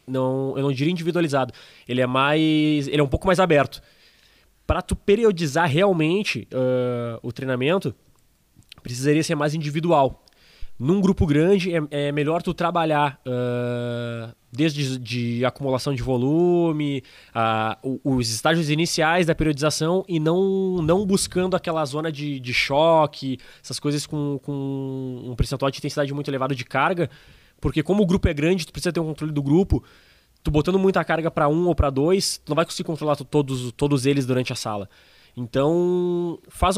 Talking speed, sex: 165 wpm, male